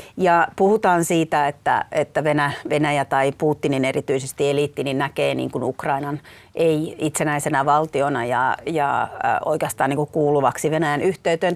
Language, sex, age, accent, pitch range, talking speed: Finnish, female, 40-59, native, 145-180 Hz, 135 wpm